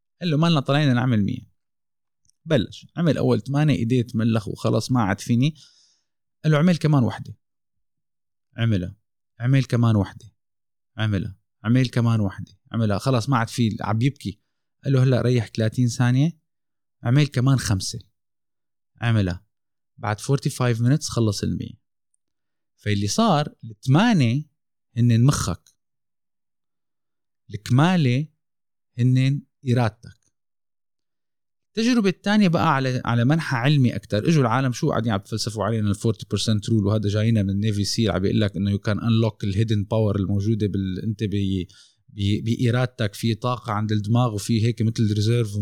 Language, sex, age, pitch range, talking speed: Arabic, male, 20-39, 105-135 Hz, 140 wpm